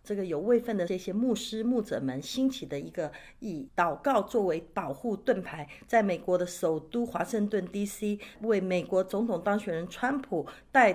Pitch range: 170-235 Hz